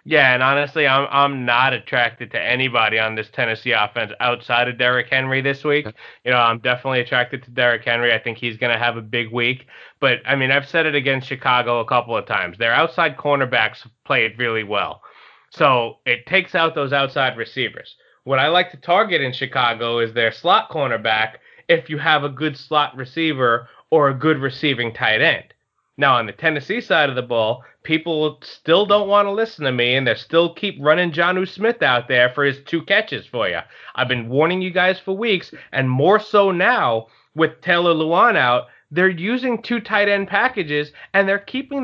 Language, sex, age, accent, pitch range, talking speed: English, male, 20-39, American, 125-180 Hz, 200 wpm